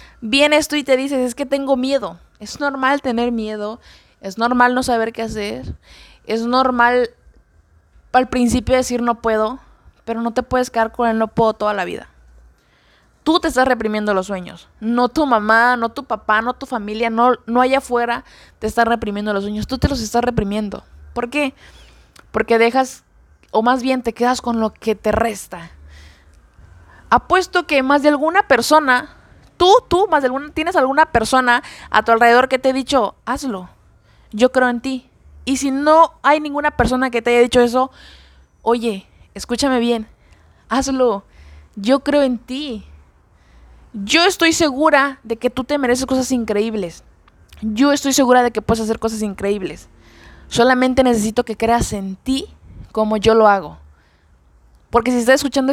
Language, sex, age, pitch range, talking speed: Spanish, female, 20-39, 220-265 Hz, 170 wpm